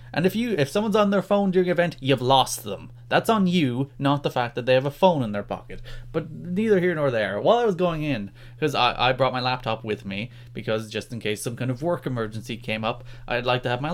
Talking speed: 265 wpm